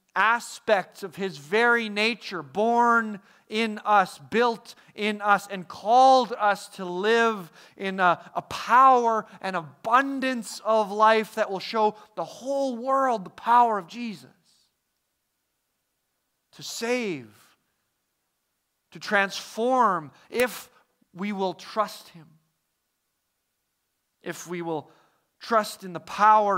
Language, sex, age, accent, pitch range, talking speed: English, male, 40-59, American, 175-220 Hz, 115 wpm